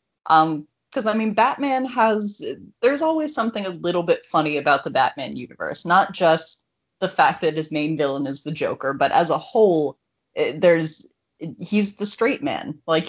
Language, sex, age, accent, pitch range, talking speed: English, female, 20-39, American, 155-205 Hz, 185 wpm